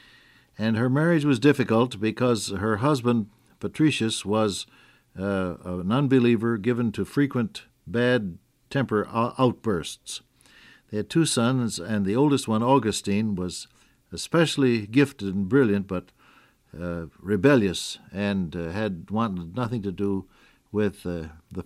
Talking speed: 125 wpm